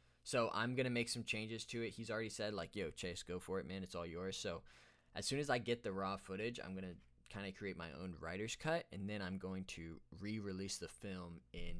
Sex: male